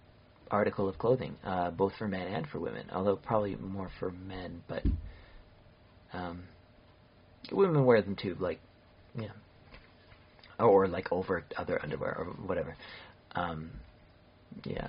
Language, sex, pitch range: English, male, 90-120 Hz